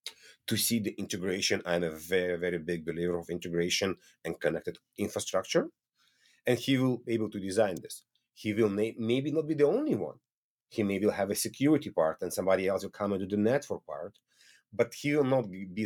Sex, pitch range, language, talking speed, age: male, 95-130 Hz, English, 200 wpm, 40-59